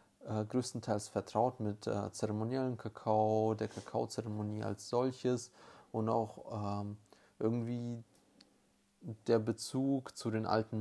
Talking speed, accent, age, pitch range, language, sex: 110 wpm, German, 30-49, 110-120 Hz, German, male